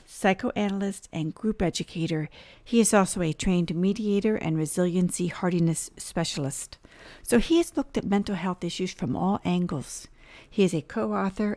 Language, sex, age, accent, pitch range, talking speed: English, female, 50-69, American, 170-205 Hz, 150 wpm